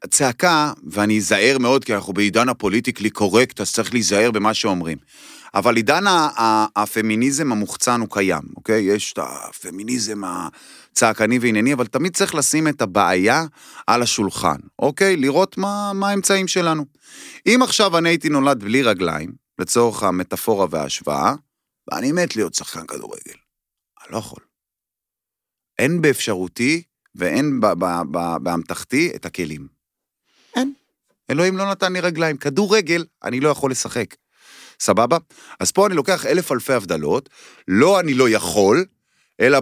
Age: 30-49